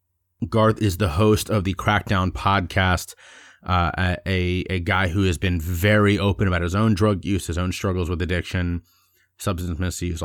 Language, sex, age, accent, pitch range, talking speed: English, male, 30-49, American, 90-105 Hz, 170 wpm